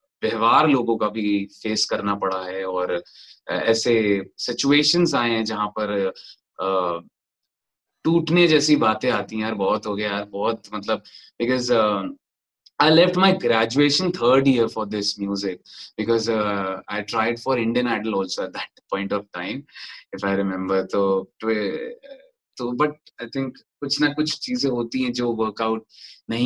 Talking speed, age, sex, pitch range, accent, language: 95 wpm, 20-39, male, 100-125 Hz, Indian, English